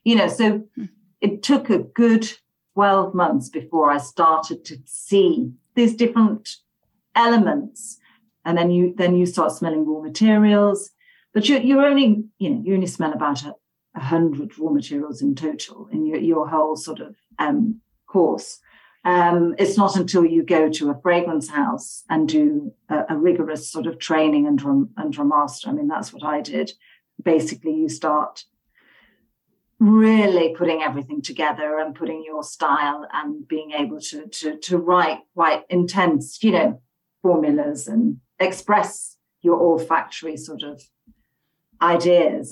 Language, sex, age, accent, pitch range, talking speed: English, female, 50-69, British, 155-225 Hz, 155 wpm